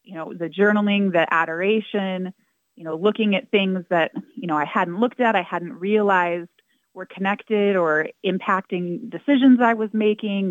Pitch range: 175-210 Hz